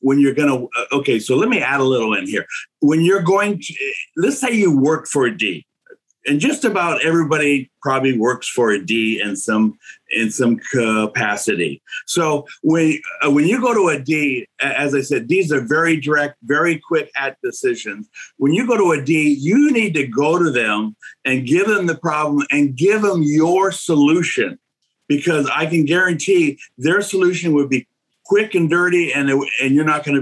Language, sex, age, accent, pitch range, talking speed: English, male, 50-69, American, 140-195 Hz, 190 wpm